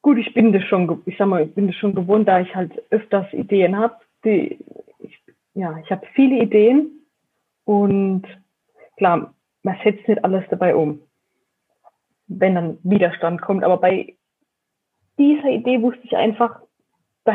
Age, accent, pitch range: 20-39, German, 195-240 Hz